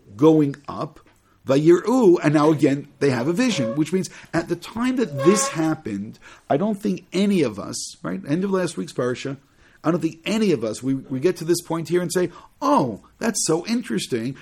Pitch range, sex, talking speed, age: 130-190 Hz, male, 210 wpm, 50-69